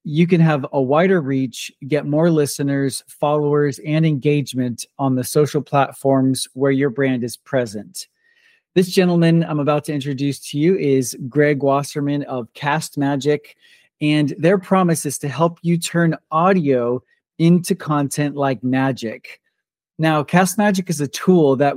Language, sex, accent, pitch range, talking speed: English, male, American, 135-165 Hz, 150 wpm